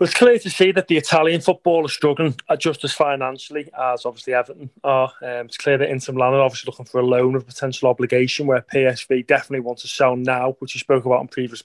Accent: British